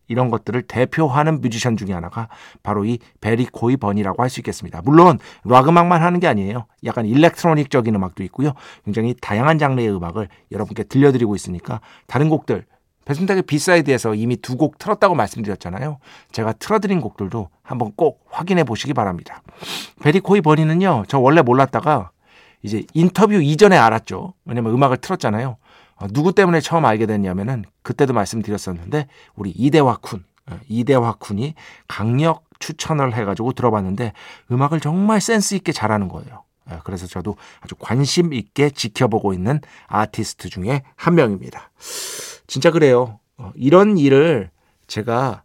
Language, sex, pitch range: Korean, male, 105-160 Hz